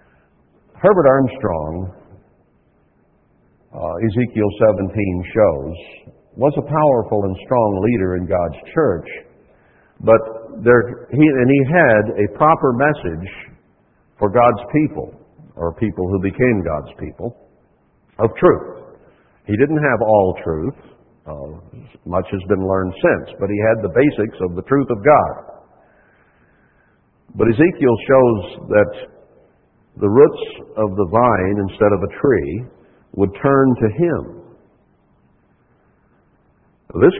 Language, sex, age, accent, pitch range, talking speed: English, male, 60-79, American, 100-135 Hz, 120 wpm